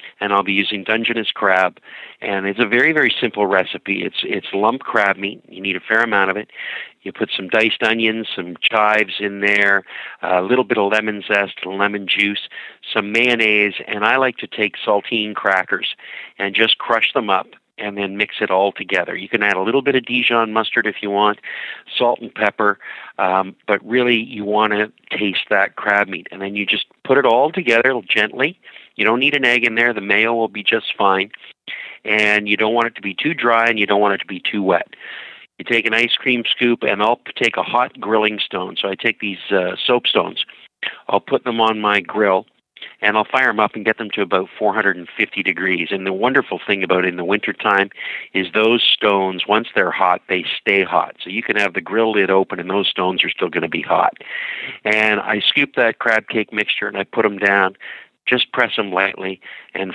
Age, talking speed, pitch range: 50-69, 215 wpm, 100-110 Hz